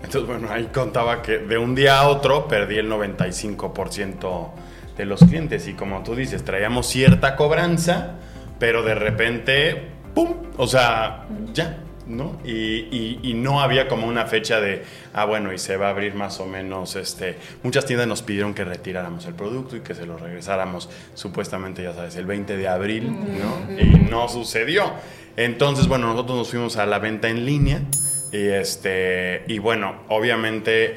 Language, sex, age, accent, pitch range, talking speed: Spanish, male, 20-39, Mexican, 100-130 Hz, 175 wpm